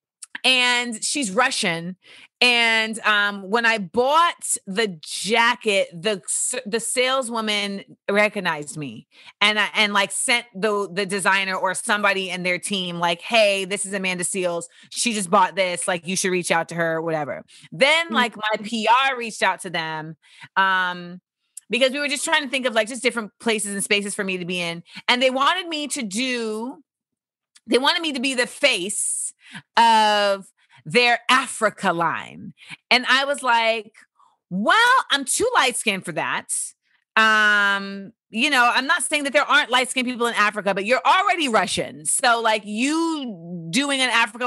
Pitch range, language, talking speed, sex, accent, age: 195-250 Hz, English, 165 wpm, female, American, 30-49